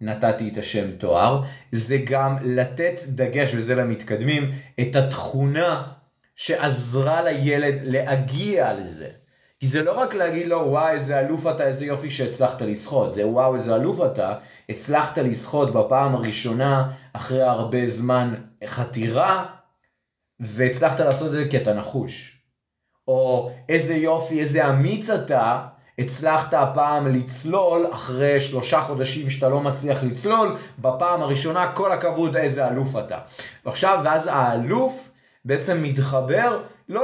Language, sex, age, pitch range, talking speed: Hebrew, male, 30-49, 125-165 Hz, 125 wpm